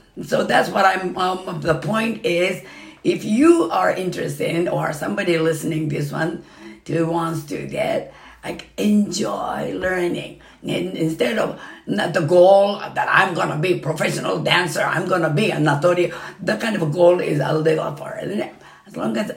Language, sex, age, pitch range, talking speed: English, female, 50-69, 160-180 Hz, 165 wpm